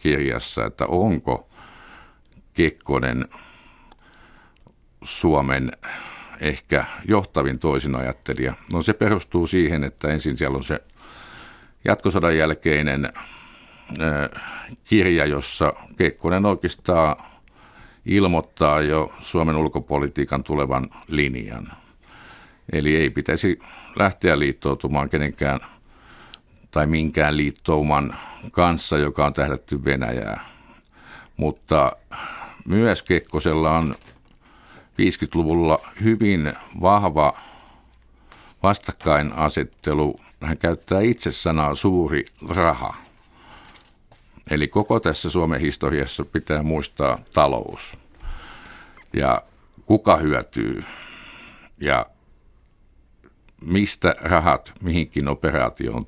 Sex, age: male, 50-69